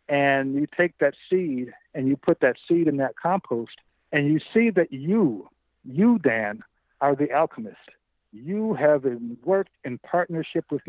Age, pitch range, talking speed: 50-69, 130-160 Hz, 160 wpm